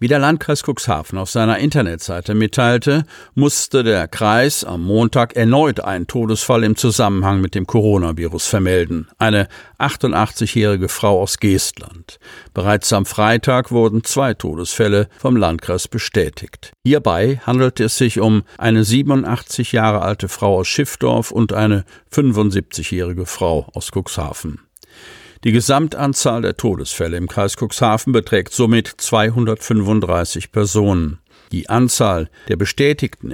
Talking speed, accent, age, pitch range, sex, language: 125 wpm, German, 50-69, 95-120 Hz, male, German